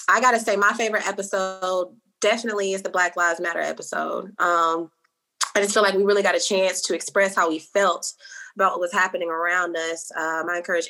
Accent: American